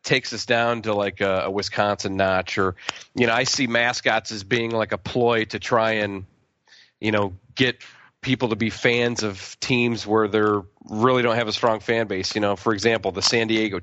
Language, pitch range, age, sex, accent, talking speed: English, 110-140 Hz, 40-59, male, American, 210 wpm